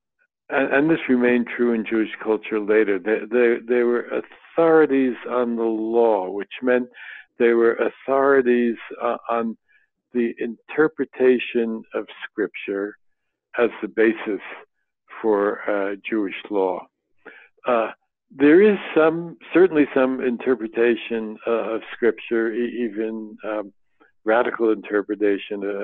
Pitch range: 110-135 Hz